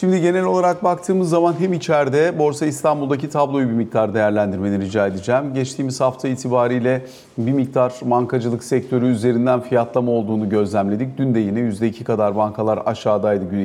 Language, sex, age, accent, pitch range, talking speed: Turkish, male, 40-59, native, 115-140 Hz, 150 wpm